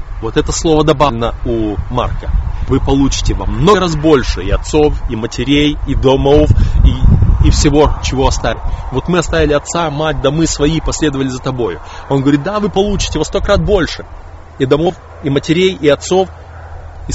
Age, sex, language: 20-39, male, Russian